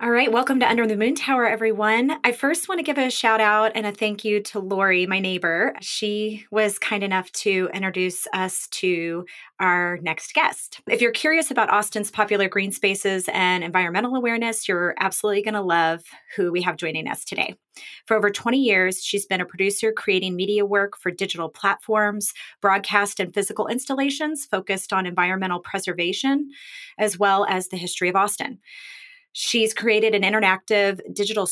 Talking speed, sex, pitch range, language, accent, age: 175 wpm, female, 185-220 Hz, English, American, 30-49